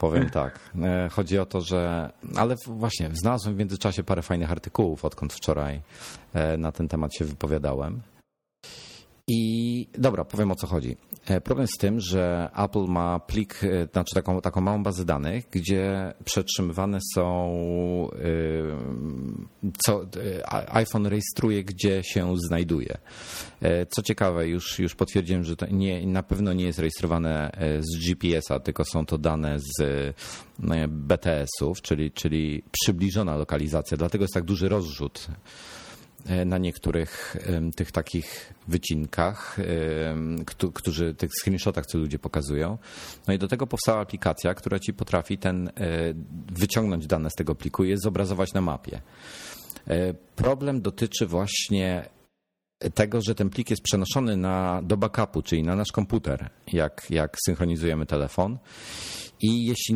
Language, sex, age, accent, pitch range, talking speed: Polish, male, 40-59, native, 80-100 Hz, 130 wpm